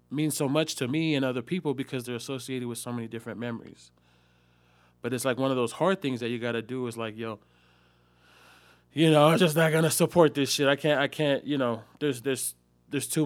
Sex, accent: male, American